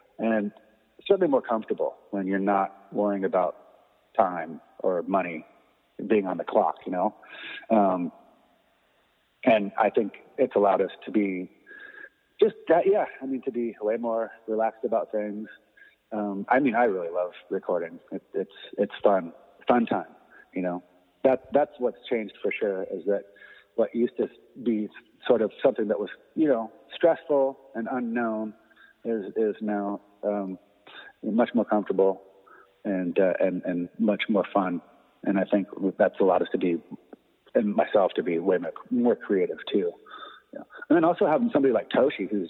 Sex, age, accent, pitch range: male, 30-49, American, 95-120 Hz